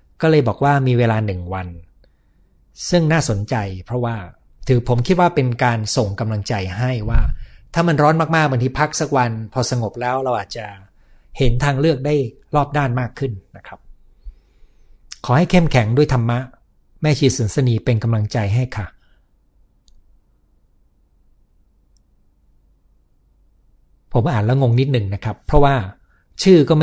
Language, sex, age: Thai, male, 60-79